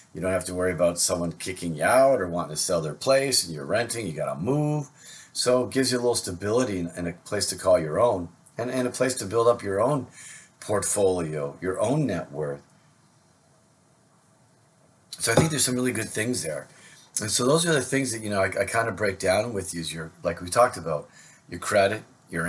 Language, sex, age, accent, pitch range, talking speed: English, male, 40-59, American, 90-125 Hz, 230 wpm